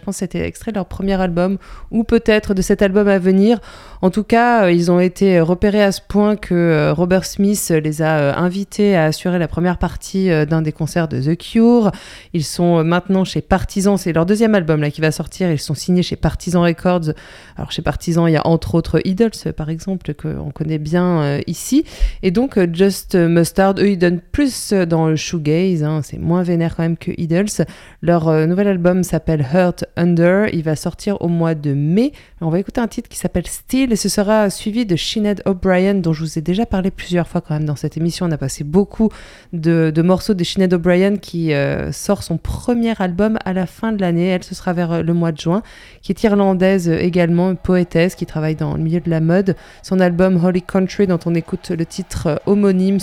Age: 20-39